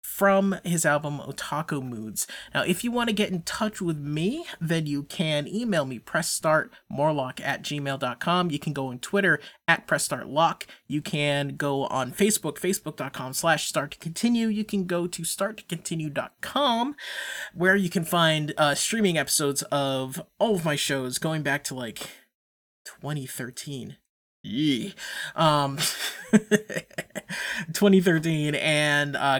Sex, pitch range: male, 145-195 Hz